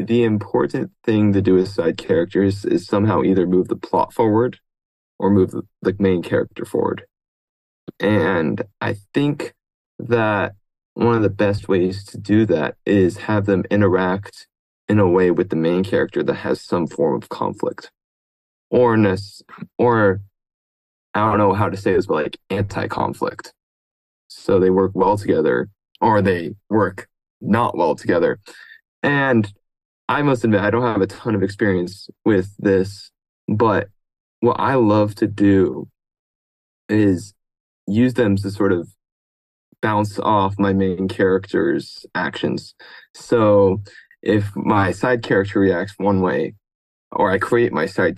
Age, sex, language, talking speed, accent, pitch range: 20-39, male, English, 145 wpm, American, 95-105 Hz